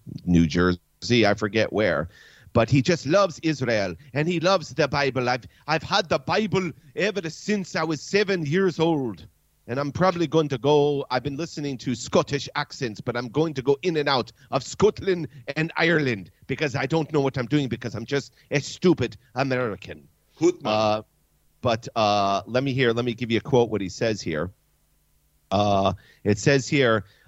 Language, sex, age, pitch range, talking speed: English, male, 40-59, 115-160 Hz, 190 wpm